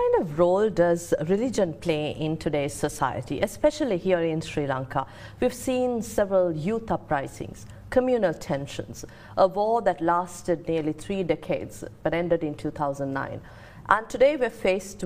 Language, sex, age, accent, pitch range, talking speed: English, female, 50-69, Indian, 150-195 Hz, 150 wpm